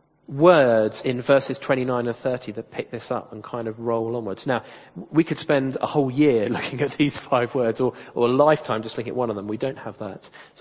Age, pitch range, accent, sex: 30-49, 115-150 Hz, British, male